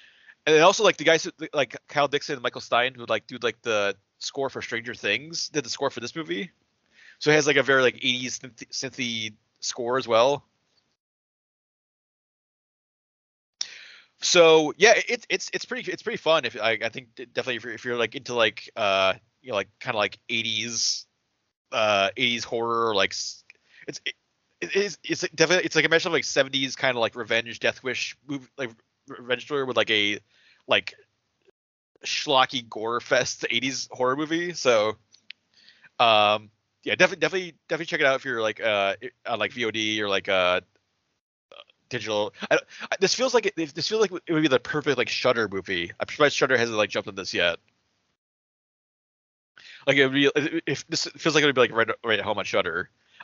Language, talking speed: English, 195 wpm